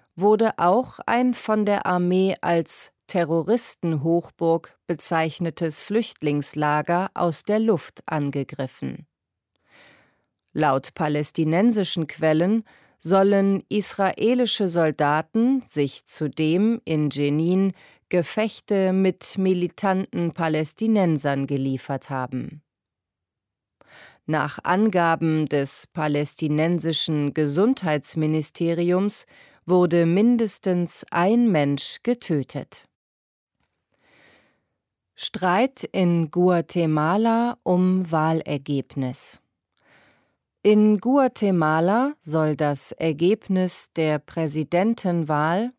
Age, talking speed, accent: 30-49, 70 wpm, German